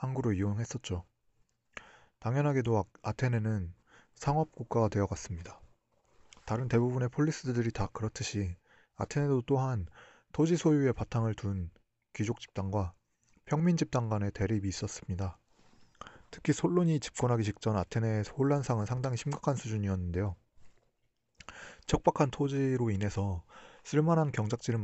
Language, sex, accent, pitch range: Korean, male, native, 100-135 Hz